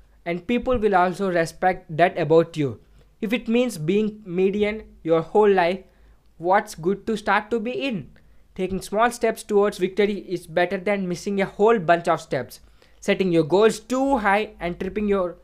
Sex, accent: male, Indian